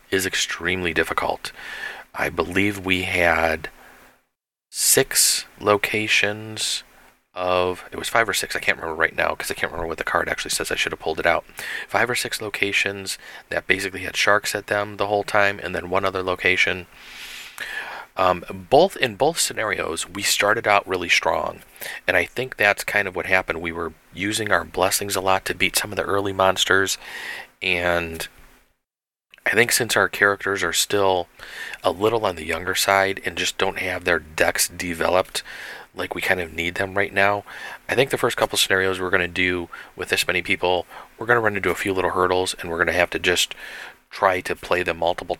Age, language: 30-49, English